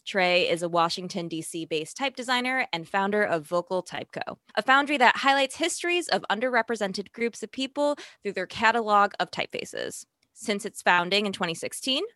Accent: American